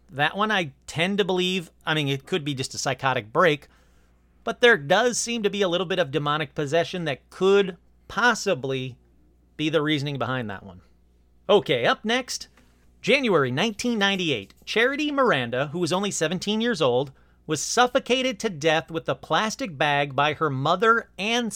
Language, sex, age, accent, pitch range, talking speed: English, male, 40-59, American, 125-195 Hz, 170 wpm